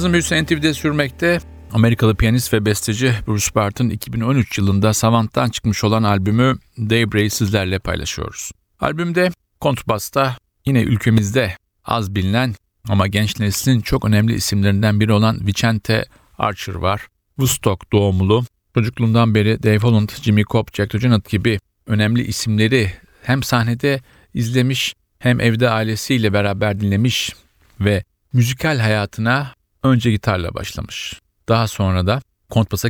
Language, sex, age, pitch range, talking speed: Turkish, male, 50-69, 100-125 Hz, 115 wpm